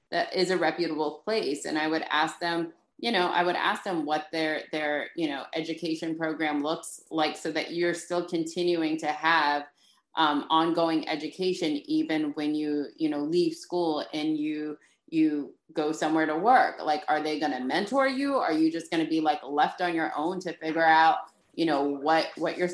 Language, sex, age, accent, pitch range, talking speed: English, female, 30-49, American, 155-185 Hz, 200 wpm